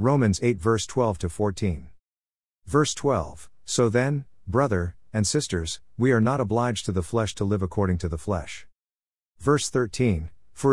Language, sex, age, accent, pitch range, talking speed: English, male, 50-69, American, 90-120 Hz, 160 wpm